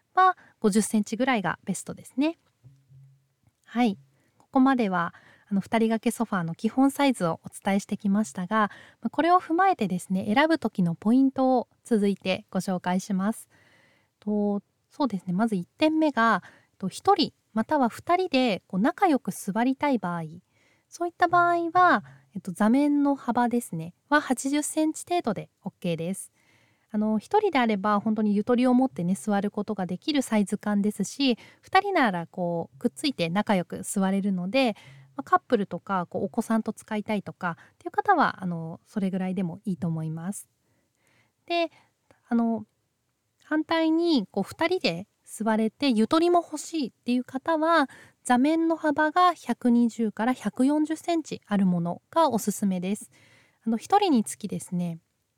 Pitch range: 190-280 Hz